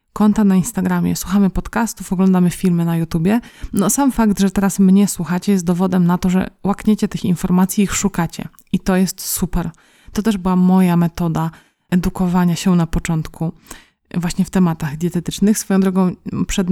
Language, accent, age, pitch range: Polish, native, 20-39, 180-205 Hz